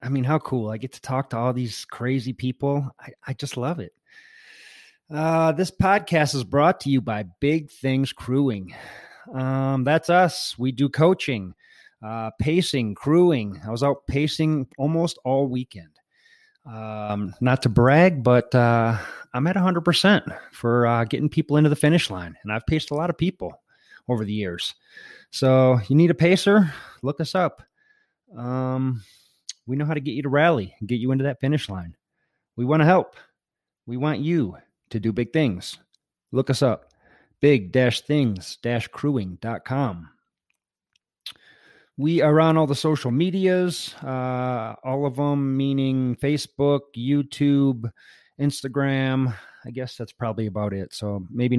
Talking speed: 155 wpm